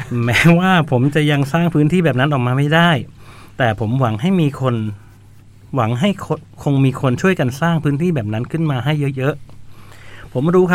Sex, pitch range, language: male, 105-145 Hz, Thai